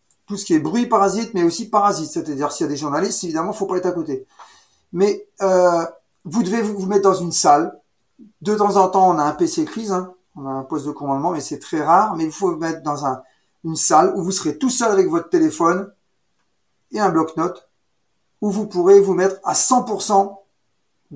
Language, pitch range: French, 165-195 Hz